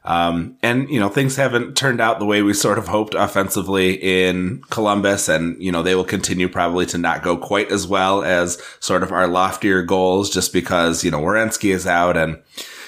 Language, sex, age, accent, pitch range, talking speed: English, male, 30-49, American, 85-105 Hz, 205 wpm